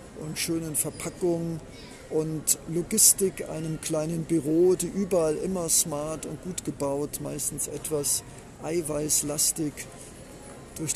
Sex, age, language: male, 50-69, German